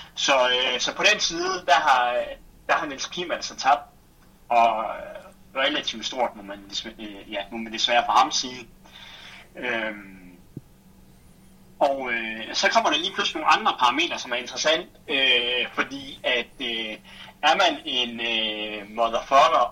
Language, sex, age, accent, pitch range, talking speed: Danish, male, 30-49, native, 105-135 Hz, 145 wpm